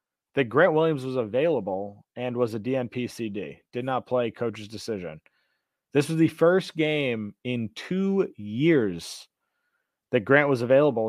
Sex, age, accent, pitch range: male, 30-49, American, 120-140 Hz